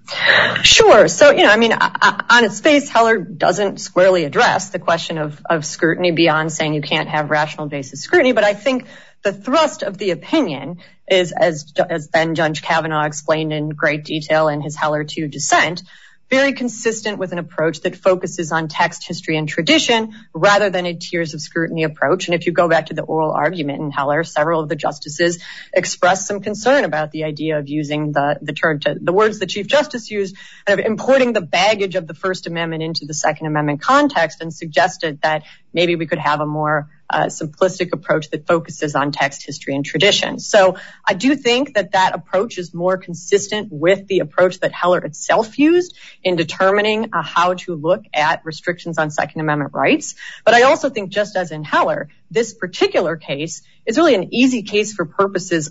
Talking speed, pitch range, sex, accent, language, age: 200 wpm, 155-205 Hz, female, American, English, 30-49